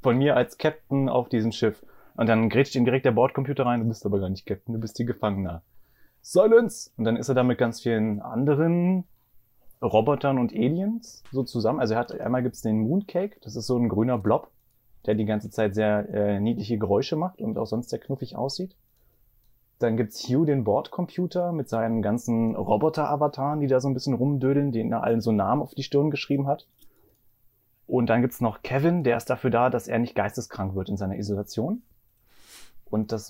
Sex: male